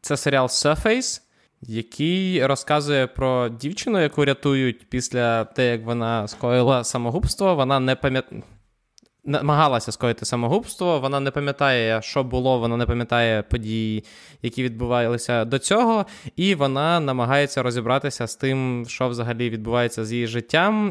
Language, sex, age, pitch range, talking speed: Ukrainian, male, 20-39, 115-155 Hz, 130 wpm